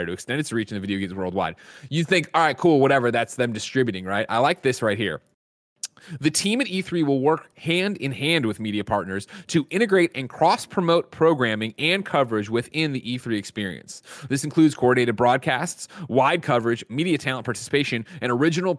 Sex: male